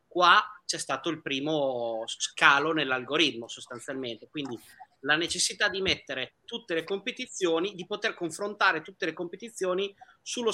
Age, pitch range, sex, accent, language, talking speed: 30-49, 135-205 Hz, male, native, Italian, 130 wpm